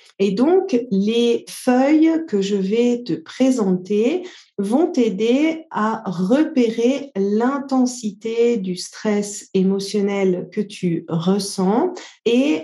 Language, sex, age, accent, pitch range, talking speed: French, female, 40-59, French, 200-255 Hz, 100 wpm